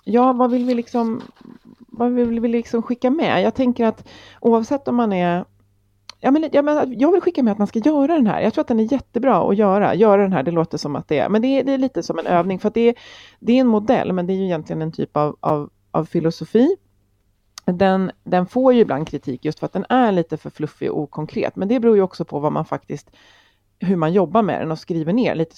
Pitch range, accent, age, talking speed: 160-235 Hz, native, 30-49, 250 wpm